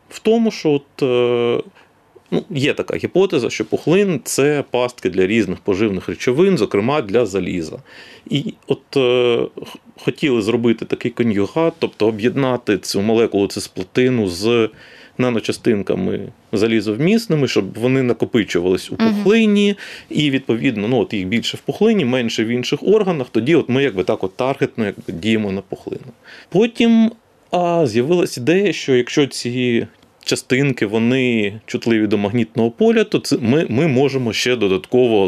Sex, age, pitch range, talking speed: male, 30-49, 115-160 Hz, 135 wpm